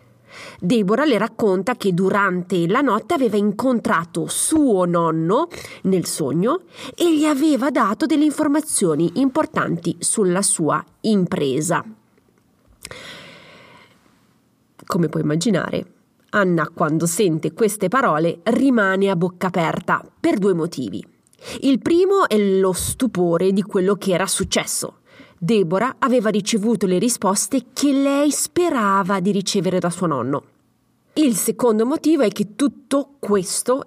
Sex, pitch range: female, 180-255 Hz